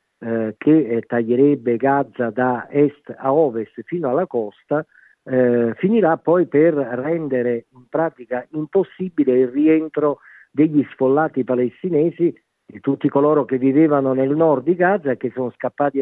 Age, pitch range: 50-69, 120-145 Hz